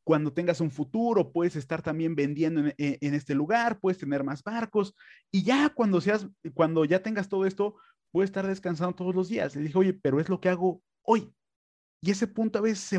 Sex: male